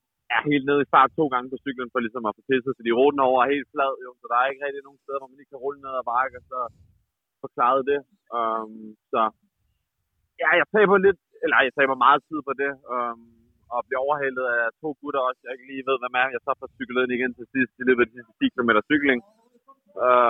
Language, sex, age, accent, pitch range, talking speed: Danish, male, 20-39, native, 115-140 Hz, 240 wpm